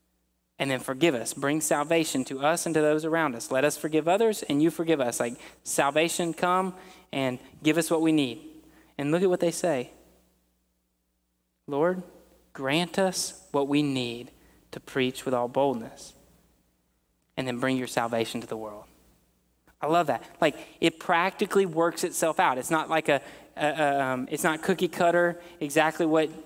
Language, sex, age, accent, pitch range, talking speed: English, male, 20-39, American, 125-160 Hz, 170 wpm